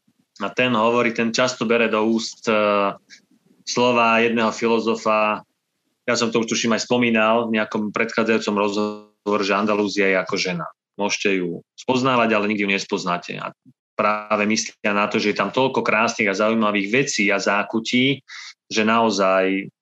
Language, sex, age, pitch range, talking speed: Slovak, male, 20-39, 100-115 Hz, 155 wpm